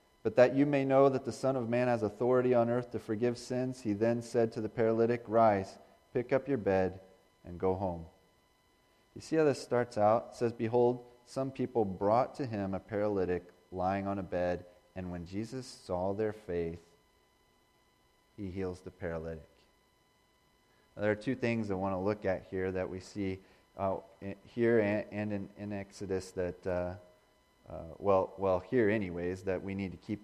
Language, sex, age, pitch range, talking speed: English, male, 30-49, 95-110 Hz, 180 wpm